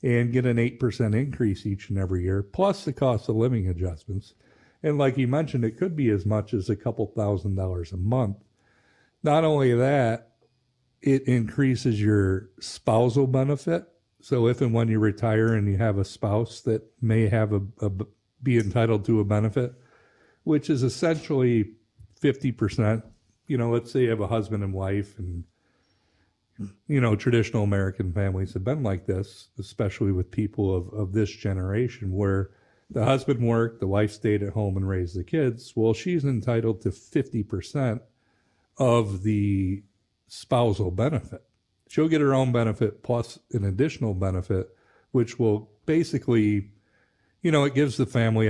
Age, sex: 50-69, male